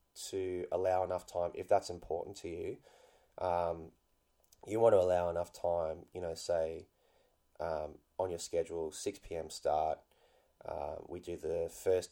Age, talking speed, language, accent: 20-39, 155 wpm, English, Australian